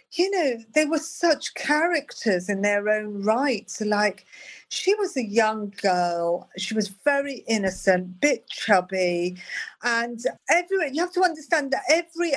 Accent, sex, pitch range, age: British, female, 200-275 Hz, 50-69